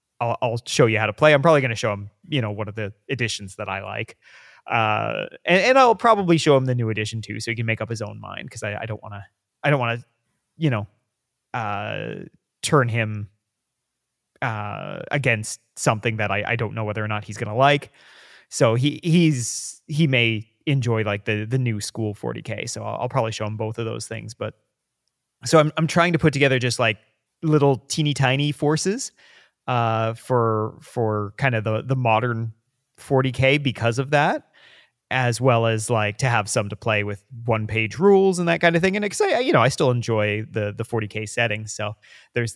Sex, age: male, 30-49